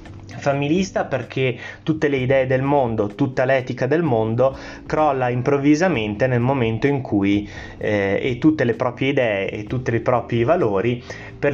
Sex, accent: male, native